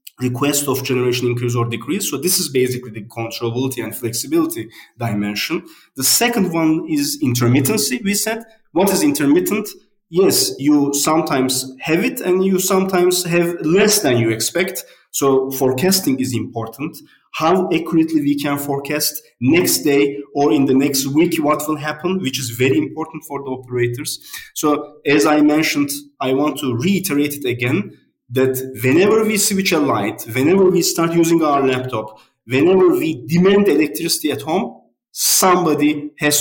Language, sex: English, male